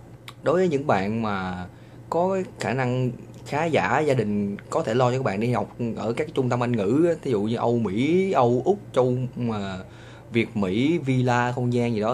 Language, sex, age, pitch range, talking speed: Vietnamese, male, 20-39, 110-130 Hz, 210 wpm